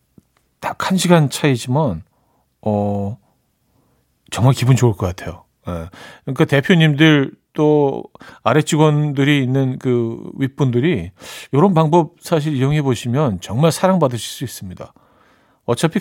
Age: 40-59